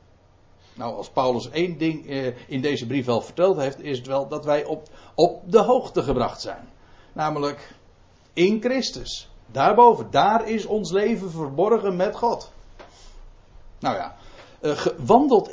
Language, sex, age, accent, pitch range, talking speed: Dutch, male, 60-79, Dutch, 120-190 Hz, 140 wpm